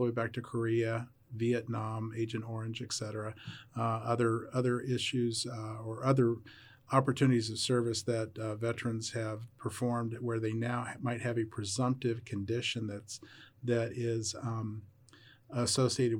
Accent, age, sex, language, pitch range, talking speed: American, 40-59, male, English, 110-125 Hz, 135 wpm